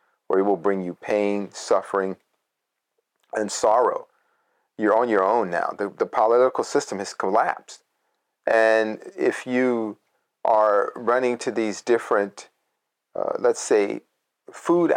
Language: English